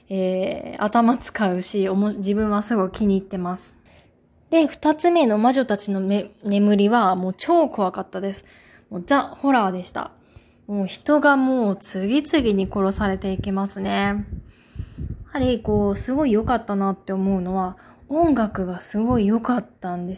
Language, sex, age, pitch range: Japanese, female, 20-39, 195-250 Hz